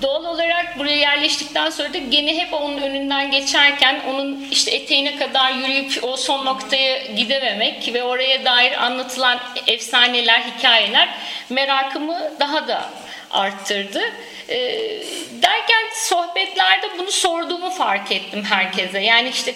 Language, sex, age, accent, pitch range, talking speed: Turkish, female, 50-69, native, 235-335 Hz, 120 wpm